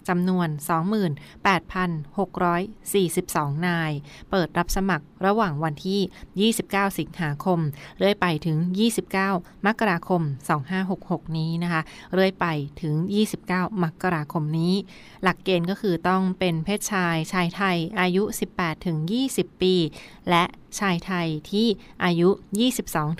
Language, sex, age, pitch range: Thai, female, 20-39, 165-195 Hz